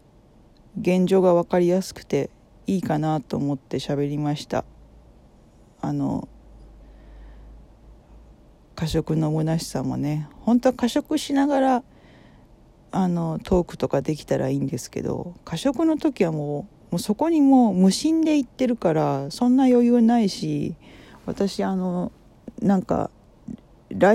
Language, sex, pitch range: Japanese, female, 145-210 Hz